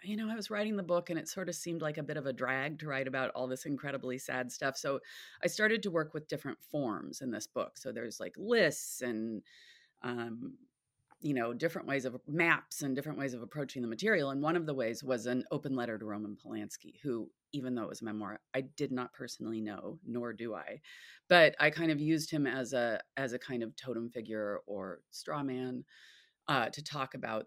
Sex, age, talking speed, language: female, 30-49, 225 wpm, English